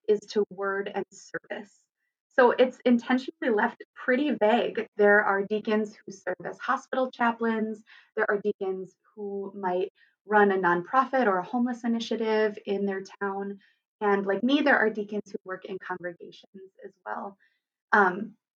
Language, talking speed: English, 150 wpm